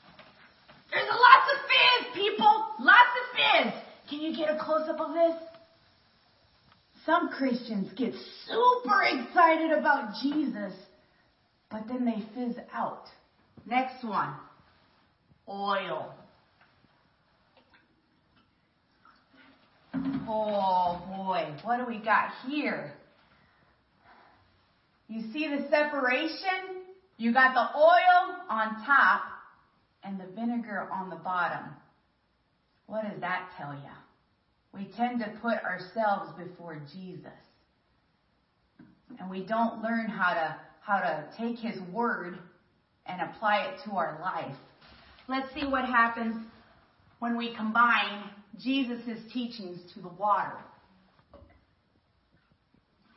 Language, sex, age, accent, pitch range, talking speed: English, female, 30-49, American, 200-295 Hz, 105 wpm